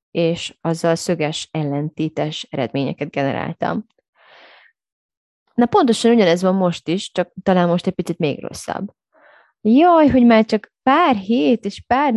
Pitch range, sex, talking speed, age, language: 155-185 Hz, female, 135 wpm, 20-39, Hungarian